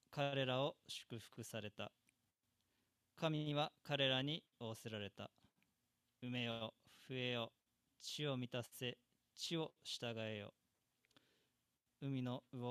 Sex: male